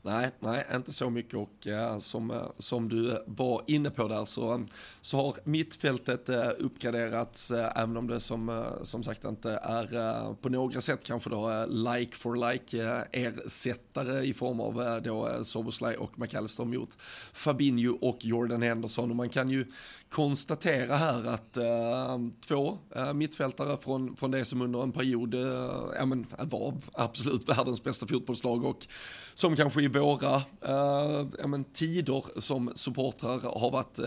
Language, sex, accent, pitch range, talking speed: Swedish, male, native, 120-135 Hz, 170 wpm